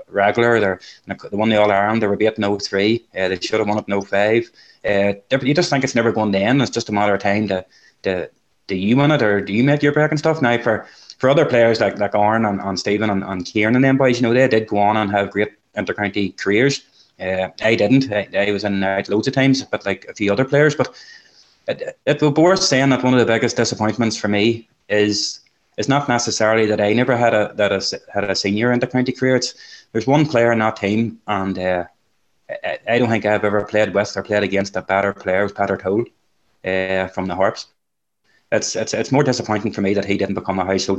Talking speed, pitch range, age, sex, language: 240 wpm, 100-120 Hz, 20-39, male, English